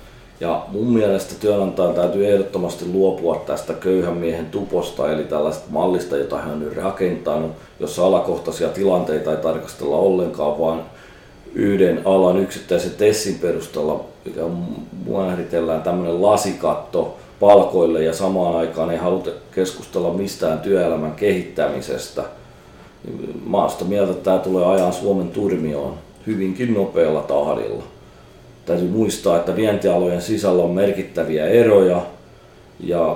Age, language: 40-59, Finnish